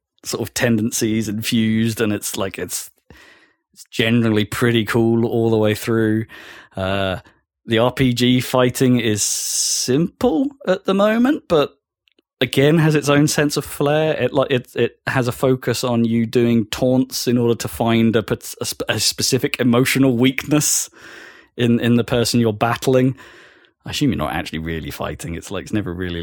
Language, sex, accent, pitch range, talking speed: English, male, British, 100-125 Hz, 165 wpm